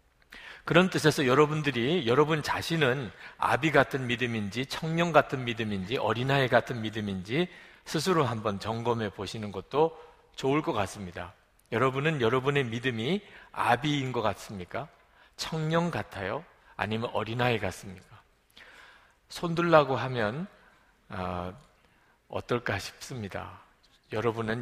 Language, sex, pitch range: Korean, male, 105-145 Hz